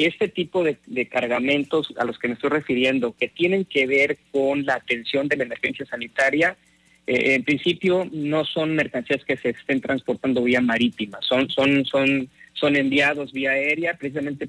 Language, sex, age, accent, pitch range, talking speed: Spanish, male, 40-59, Mexican, 125-150 Hz, 175 wpm